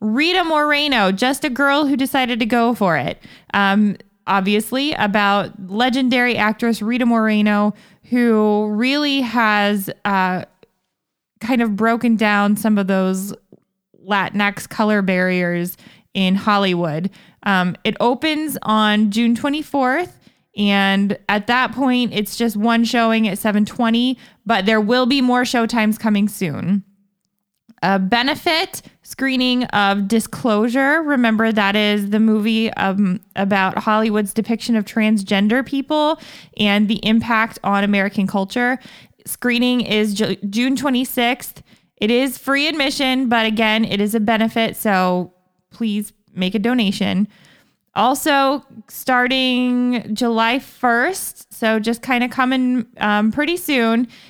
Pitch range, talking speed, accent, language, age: 200-245 Hz, 120 wpm, American, English, 20-39